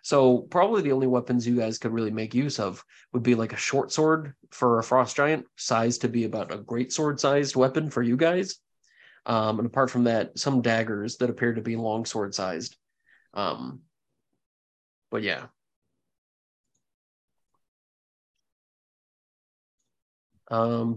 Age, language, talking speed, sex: 30-49, English, 140 wpm, male